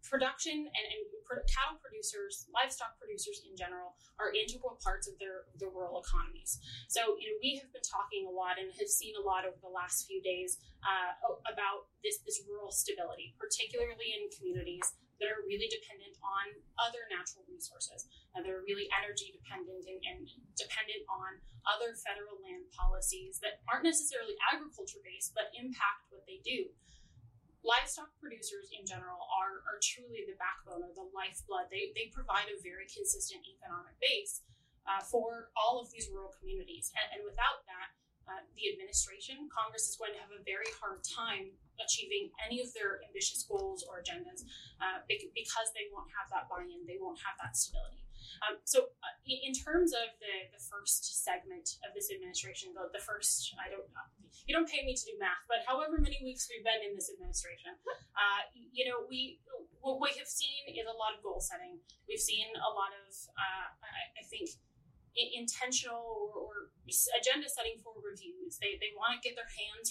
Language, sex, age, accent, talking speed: English, female, 10-29, American, 180 wpm